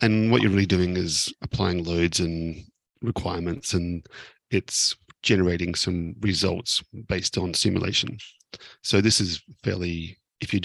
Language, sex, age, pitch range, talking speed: English, male, 40-59, 90-105 Hz, 135 wpm